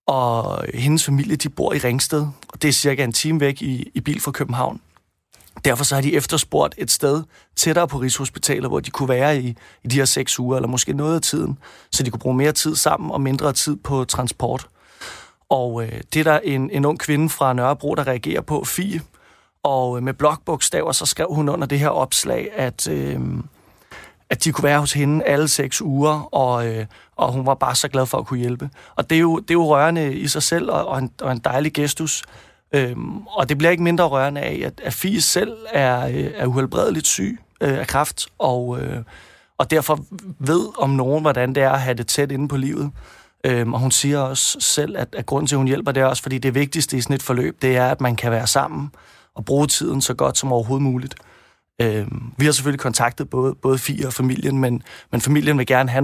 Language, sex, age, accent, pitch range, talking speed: Danish, male, 30-49, native, 130-150 Hz, 225 wpm